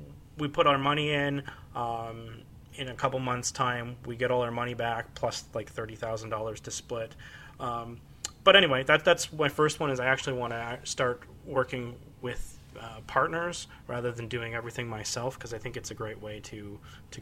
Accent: American